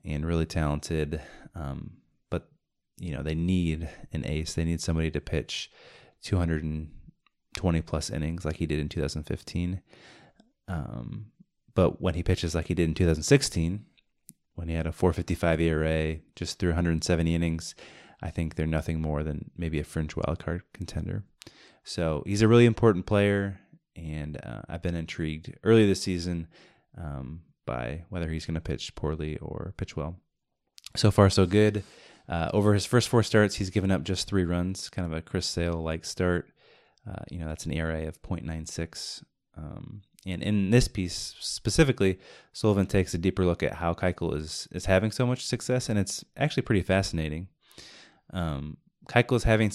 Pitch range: 80-100 Hz